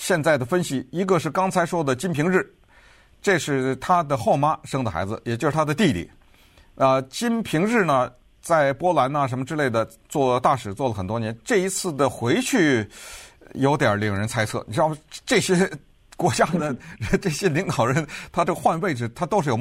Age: 50-69